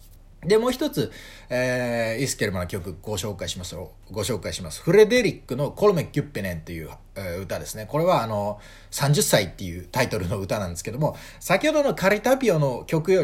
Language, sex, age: Japanese, male, 30-49